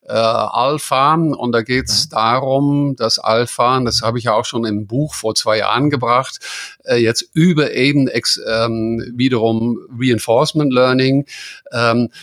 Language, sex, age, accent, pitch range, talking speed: English, male, 50-69, German, 115-135 Hz, 150 wpm